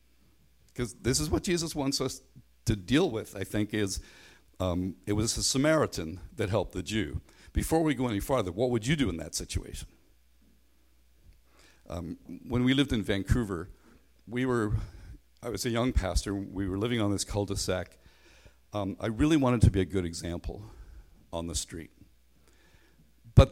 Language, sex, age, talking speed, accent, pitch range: English, male, 60-79, 170 wpm, American, 90-140 Hz